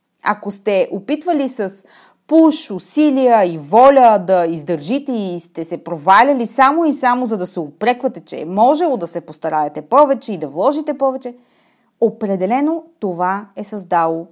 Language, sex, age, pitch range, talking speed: Bulgarian, female, 30-49, 180-260 Hz, 150 wpm